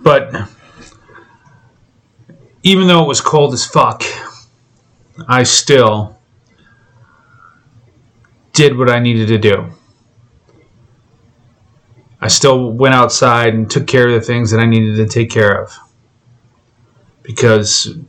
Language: English